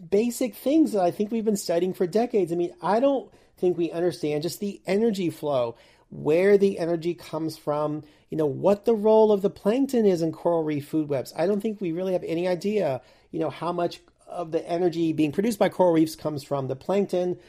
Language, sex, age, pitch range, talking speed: English, male, 40-59, 150-185 Hz, 220 wpm